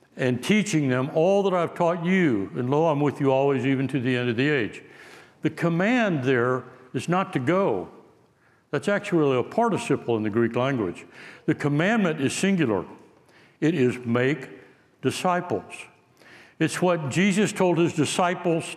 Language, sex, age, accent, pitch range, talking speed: English, male, 60-79, American, 150-190 Hz, 160 wpm